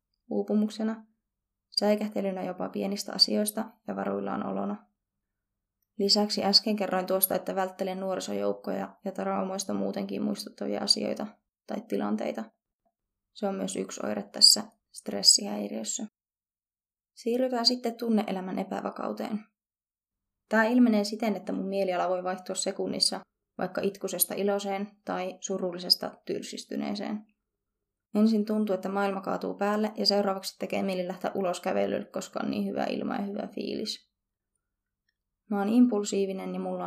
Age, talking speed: 20-39, 120 wpm